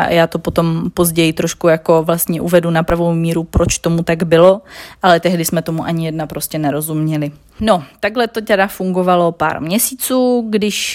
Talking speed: 175 wpm